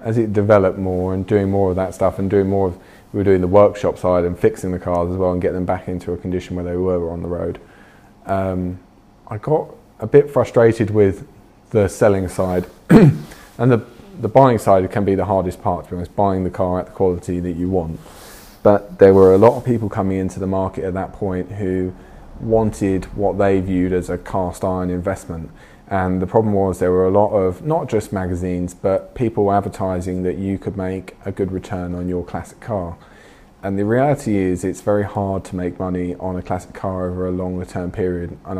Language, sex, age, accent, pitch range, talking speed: English, male, 20-39, British, 90-100 Hz, 220 wpm